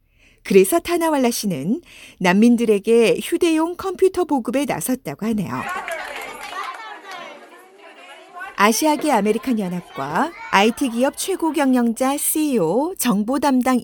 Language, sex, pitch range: Korean, female, 215-310 Hz